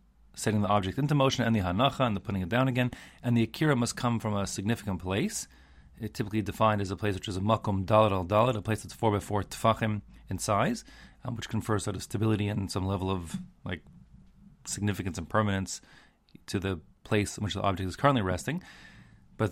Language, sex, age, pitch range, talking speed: English, male, 30-49, 95-120 Hz, 210 wpm